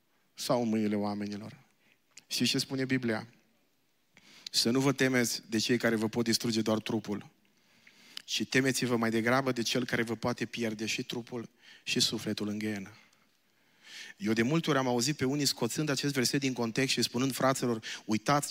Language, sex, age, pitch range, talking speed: Romanian, male, 30-49, 115-135 Hz, 170 wpm